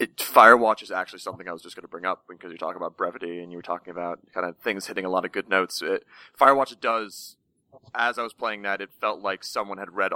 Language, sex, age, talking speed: English, male, 30-49, 265 wpm